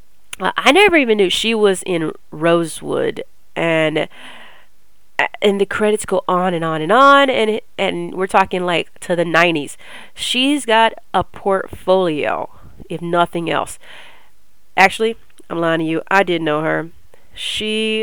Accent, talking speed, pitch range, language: American, 145 wpm, 165-220 Hz, English